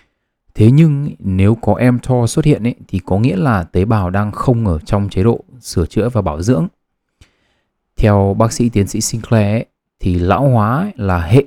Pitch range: 95-120 Hz